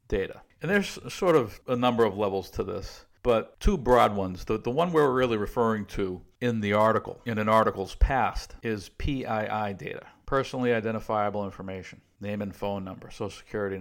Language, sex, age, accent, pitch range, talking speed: English, male, 50-69, American, 100-125 Hz, 180 wpm